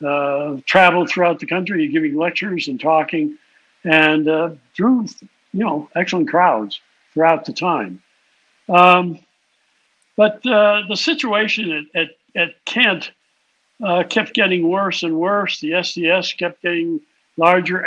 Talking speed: 130 wpm